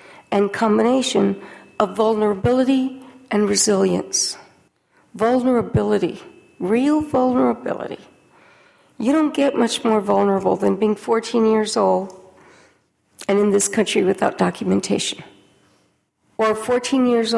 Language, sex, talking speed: English, female, 100 wpm